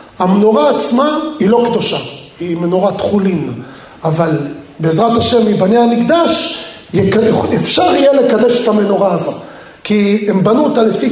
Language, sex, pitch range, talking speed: Hebrew, male, 210-275 Hz, 130 wpm